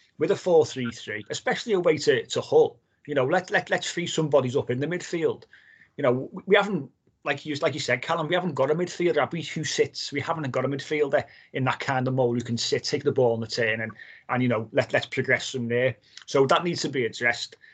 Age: 30-49